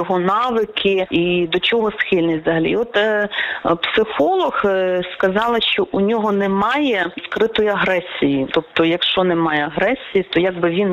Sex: female